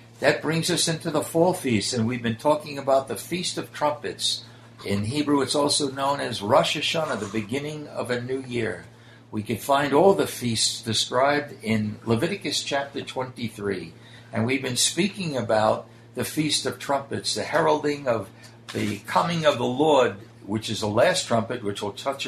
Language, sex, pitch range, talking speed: English, male, 115-145 Hz, 180 wpm